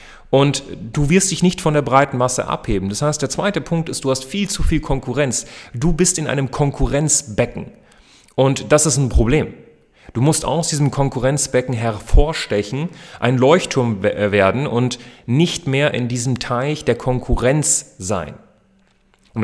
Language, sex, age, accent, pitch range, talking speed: German, male, 30-49, German, 110-160 Hz, 155 wpm